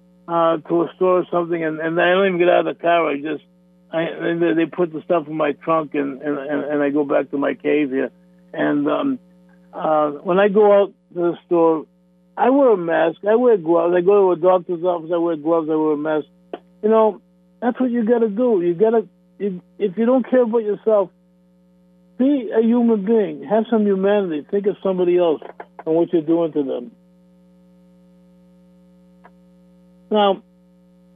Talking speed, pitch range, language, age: 195 wpm, 140-180 Hz, English, 50-69